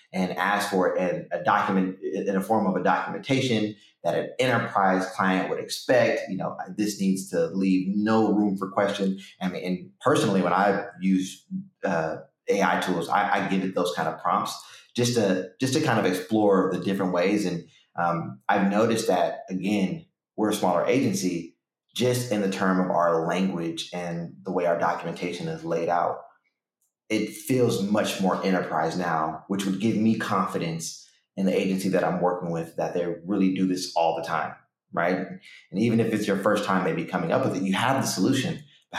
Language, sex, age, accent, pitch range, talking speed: English, male, 30-49, American, 90-110 Hz, 185 wpm